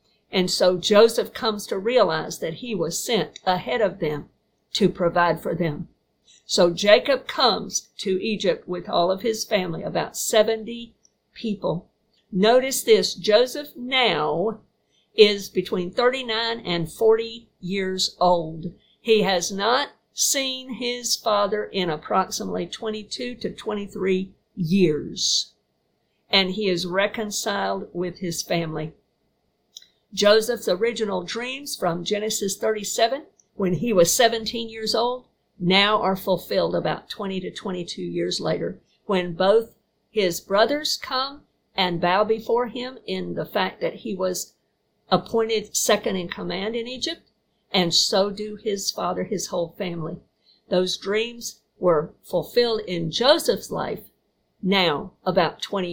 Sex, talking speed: female, 130 wpm